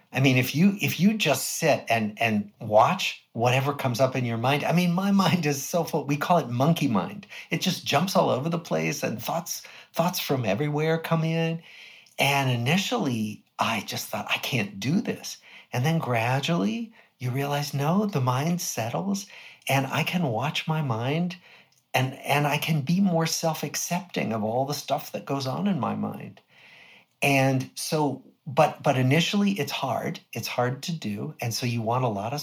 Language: English